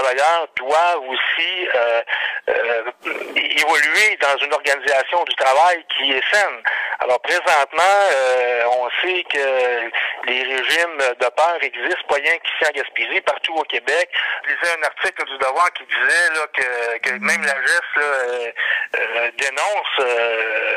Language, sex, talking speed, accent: French, male, 145 wpm, French